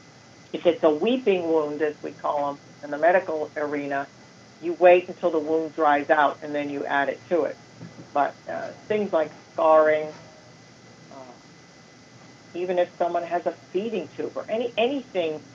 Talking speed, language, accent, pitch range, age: 165 wpm, English, American, 150-175 Hz, 50-69